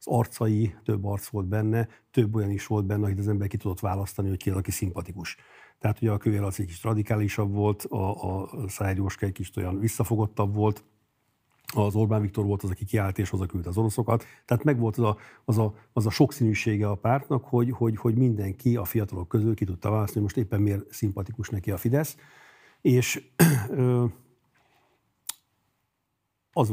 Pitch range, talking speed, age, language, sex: 100-120 Hz, 180 wpm, 50-69, Hungarian, male